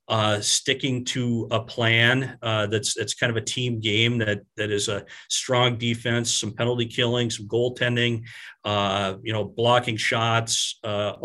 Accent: American